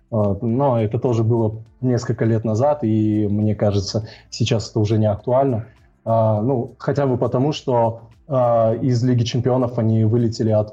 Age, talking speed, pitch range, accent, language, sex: 20-39, 145 wpm, 110-125 Hz, native, Russian, male